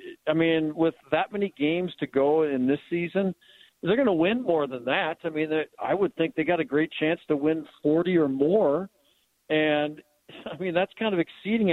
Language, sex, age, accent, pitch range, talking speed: English, male, 50-69, American, 140-170 Hz, 205 wpm